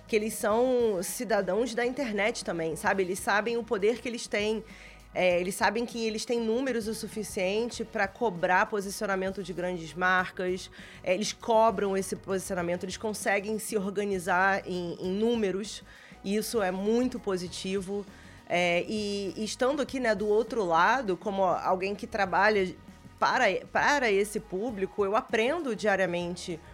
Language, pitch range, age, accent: Portuguese, 185-225 Hz, 20-39, Brazilian